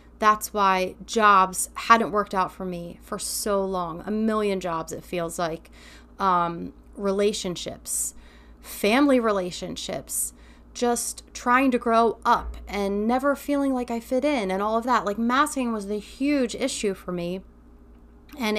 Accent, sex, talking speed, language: American, female, 150 wpm, English